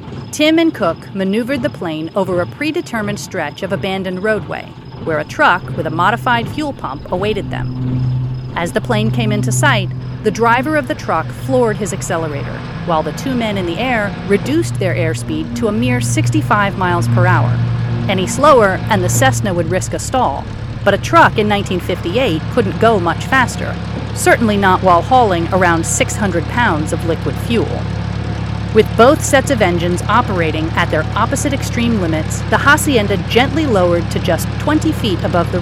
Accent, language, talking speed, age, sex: American, English, 175 wpm, 40-59, female